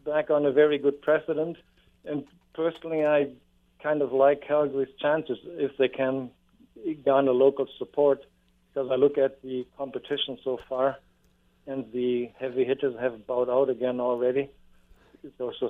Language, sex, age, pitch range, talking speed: English, male, 50-69, 125-145 Hz, 150 wpm